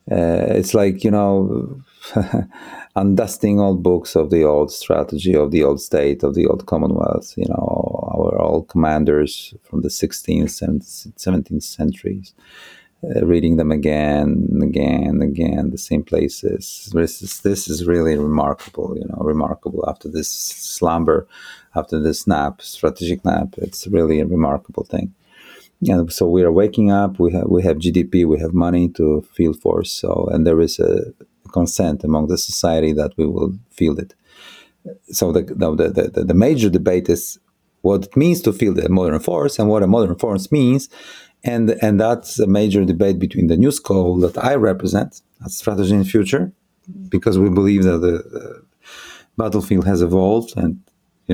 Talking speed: 170 wpm